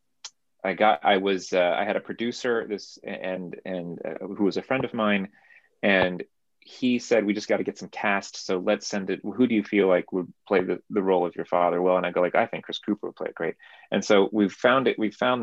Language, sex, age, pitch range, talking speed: English, male, 30-49, 95-110 Hz, 255 wpm